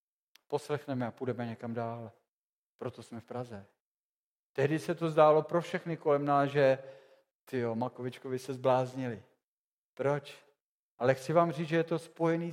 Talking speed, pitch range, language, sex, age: 150 wpm, 130-165 Hz, Czech, male, 40-59